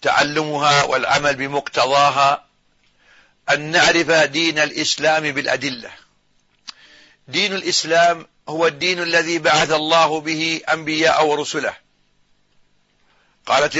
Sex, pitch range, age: male, 160-195 Hz, 50-69